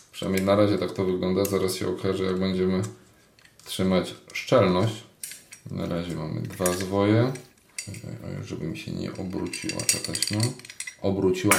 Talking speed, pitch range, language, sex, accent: 140 wpm, 90-105 Hz, Polish, male, native